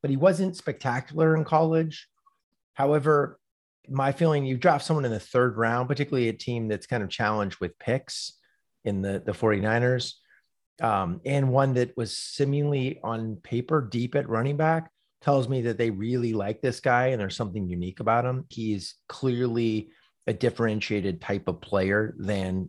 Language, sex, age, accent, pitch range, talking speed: English, male, 30-49, American, 95-130 Hz, 165 wpm